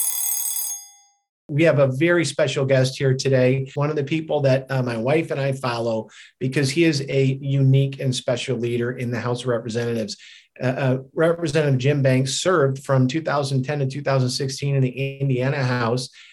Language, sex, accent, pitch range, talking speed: English, male, American, 125-140 Hz, 170 wpm